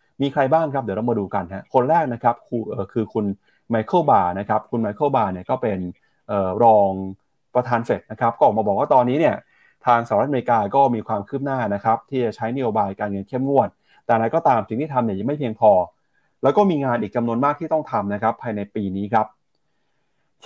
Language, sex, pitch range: Thai, male, 110-150 Hz